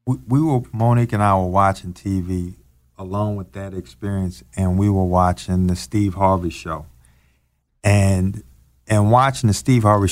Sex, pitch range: male, 95-125 Hz